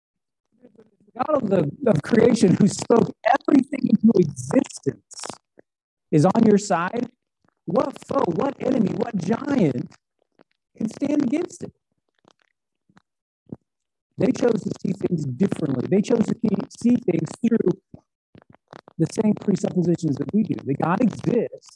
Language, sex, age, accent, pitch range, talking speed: English, male, 50-69, American, 180-240 Hz, 125 wpm